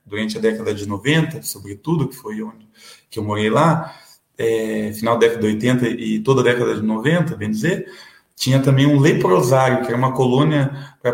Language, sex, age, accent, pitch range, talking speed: Portuguese, male, 20-39, Brazilian, 125-155 Hz, 190 wpm